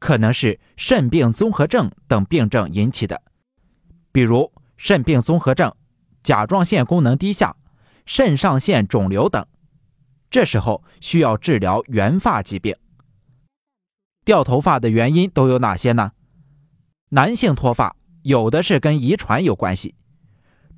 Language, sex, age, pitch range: Chinese, male, 30-49, 115-170 Hz